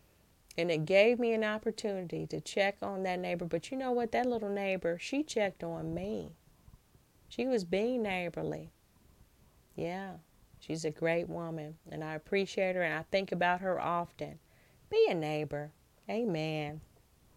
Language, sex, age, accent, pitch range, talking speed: English, female, 30-49, American, 160-210 Hz, 155 wpm